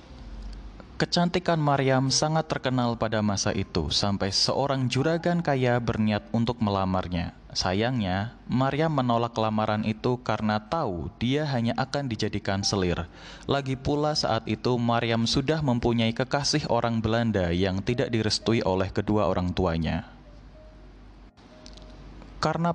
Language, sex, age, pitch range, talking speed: Indonesian, male, 20-39, 100-135 Hz, 115 wpm